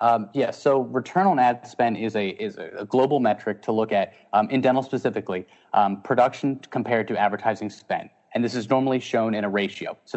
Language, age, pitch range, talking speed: English, 30-49, 105-125 Hz, 205 wpm